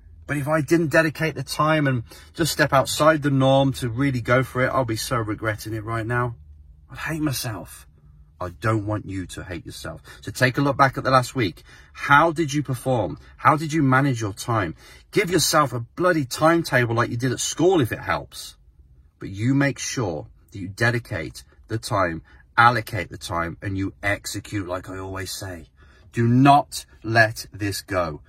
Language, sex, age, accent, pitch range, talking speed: English, male, 30-49, British, 90-125 Hz, 195 wpm